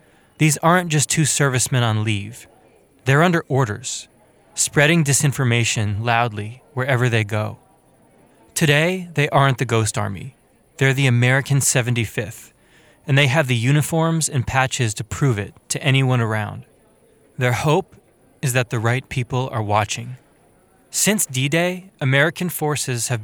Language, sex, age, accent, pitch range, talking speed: English, male, 20-39, American, 120-145 Hz, 135 wpm